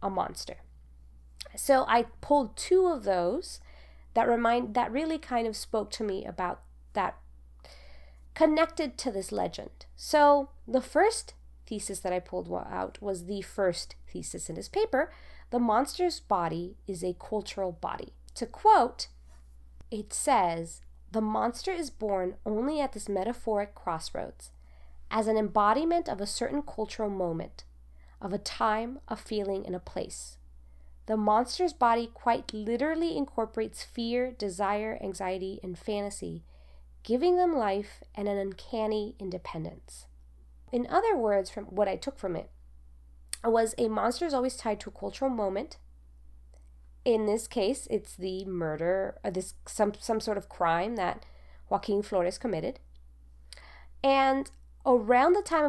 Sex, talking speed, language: female, 145 wpm, English